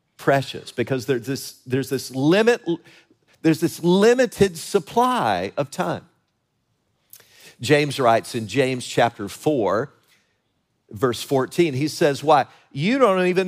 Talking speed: 120 wpm